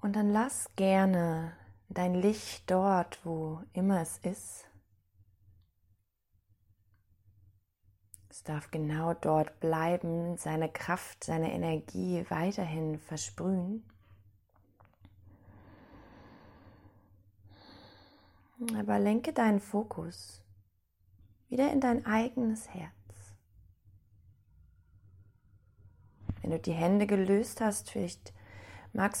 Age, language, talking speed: 30-49, German, 80 wpm